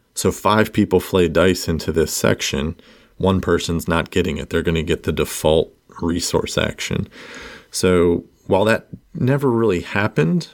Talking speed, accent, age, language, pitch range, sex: 155 wpm, American, 40-59, English, 80-95 Hz, male